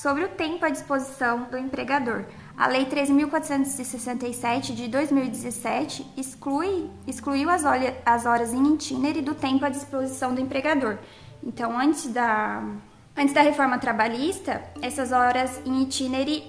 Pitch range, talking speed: 235-285 Hz, 130 wpm